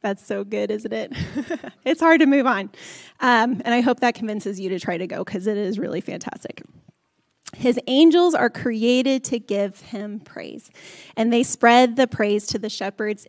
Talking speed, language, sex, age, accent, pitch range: 190 wpm, English, female, 20-39, American, 200-255 Hz